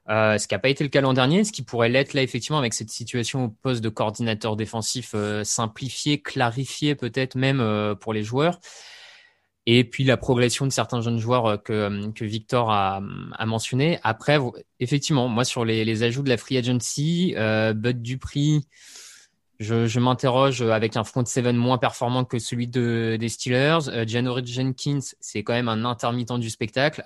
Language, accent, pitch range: French, French, 115-140 Hz